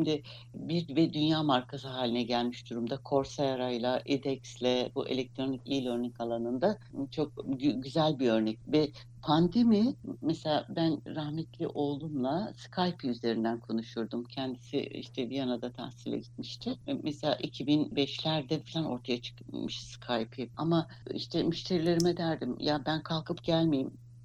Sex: female